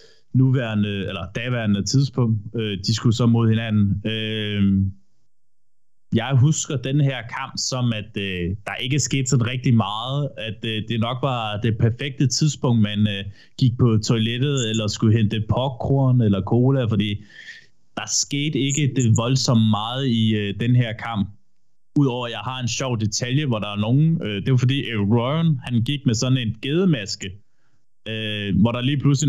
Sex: male